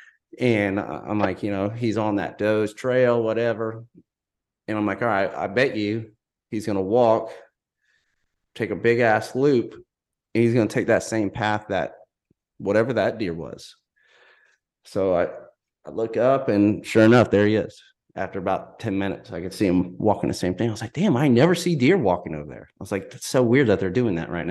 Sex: male